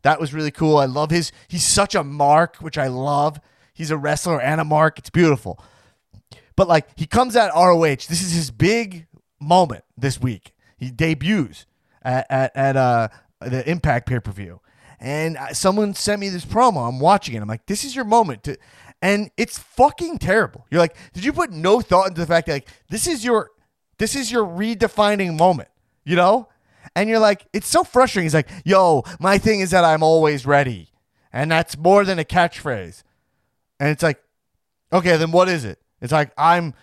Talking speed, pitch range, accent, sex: 195 wpm, 140-205 Hz, American, male